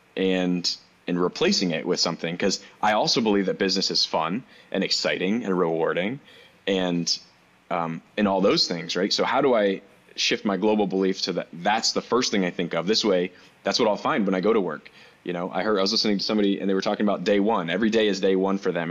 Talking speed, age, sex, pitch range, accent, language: 240 wpm, 20-39, male, 90-105 Hz, American, English